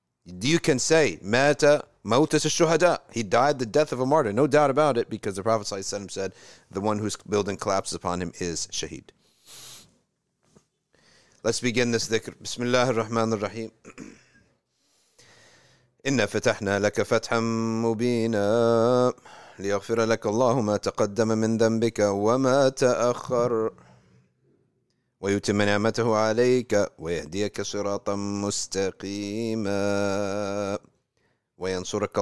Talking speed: 100 wpm